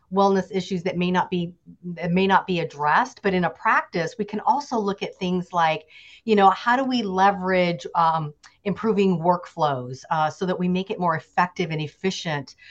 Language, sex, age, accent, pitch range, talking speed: English, female, 40-59, American, 170-205 Hz, 195 wpm